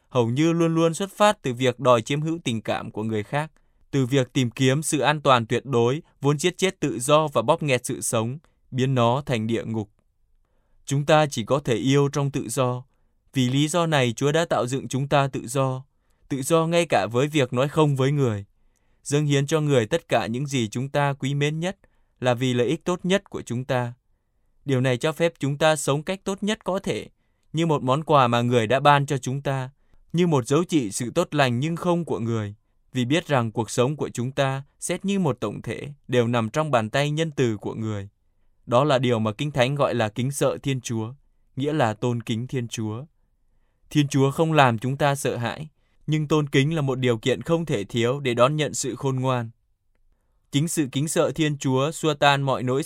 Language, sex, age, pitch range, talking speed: Vietnamese, male, 20-39, 120-150 Hz, 230 wpm